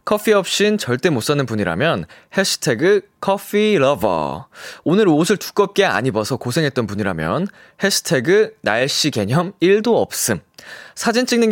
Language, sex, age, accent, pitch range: Korean, male, 20-39, native, 130-215 Hz